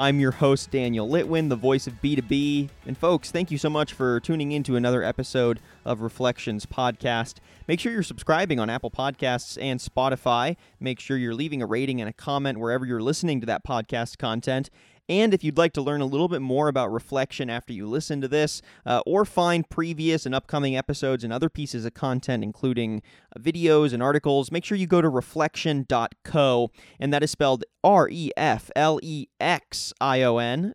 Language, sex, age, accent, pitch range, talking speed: English, male, 20-39, American, 120-155 Hz, 180 wpm